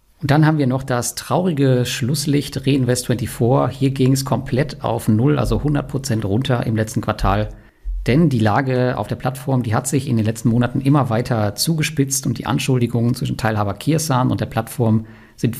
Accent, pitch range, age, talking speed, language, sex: German, 110-140 Hz, 50-69, 180 wpm, German, male